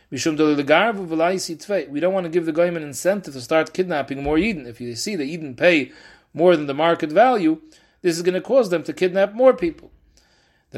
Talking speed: 200 wpm